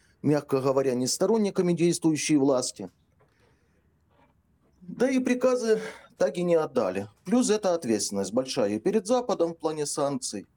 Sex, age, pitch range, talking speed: male, 40-59, 130-195 Hz, 125 wpm